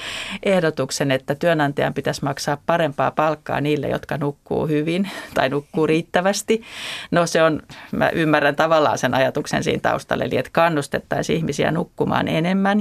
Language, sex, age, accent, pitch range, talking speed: Finnish, female, 30-49, native, 150-180 Hz, 140 wpm